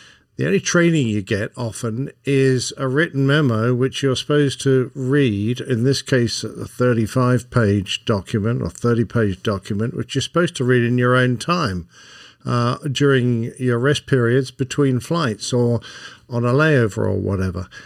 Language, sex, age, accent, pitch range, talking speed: English, male, 50-69, British, 115-135 Hz, 160 wpm